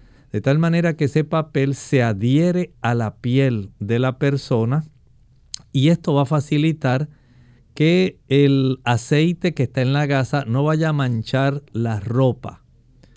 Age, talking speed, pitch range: 50-69, 150 wpm, 125-150 Hz